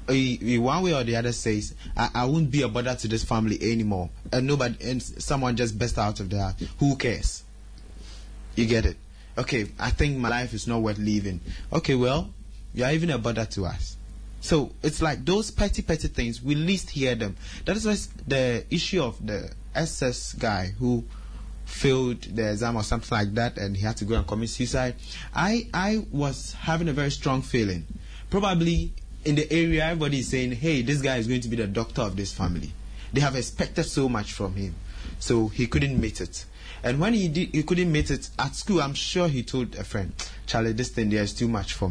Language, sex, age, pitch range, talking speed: English, male, 20-39, 105-140 Hz, 210 wpm